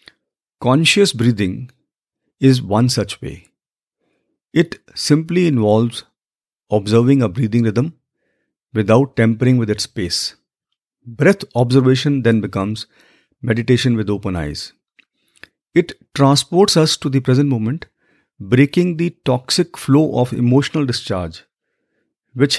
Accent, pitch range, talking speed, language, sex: Indian, 115-145 Hz, 110 wpm, English, male